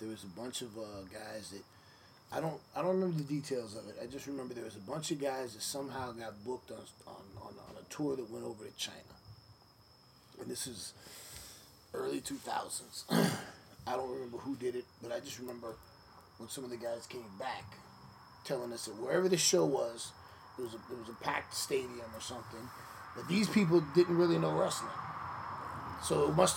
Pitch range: 110-150 Hz